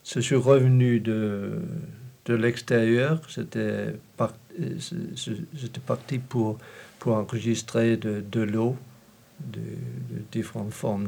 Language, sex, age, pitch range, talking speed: French, male, 60-79, 105-130 Hz, 125 wpm